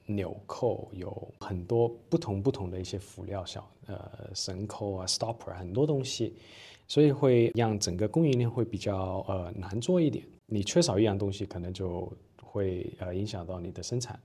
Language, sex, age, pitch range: Chinese, male, 20-39, 95-115 Hz